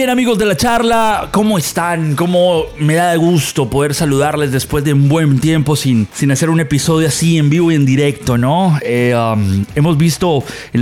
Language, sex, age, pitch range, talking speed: Spanish, male, 30-49, 140-175 Hz, 200 wpm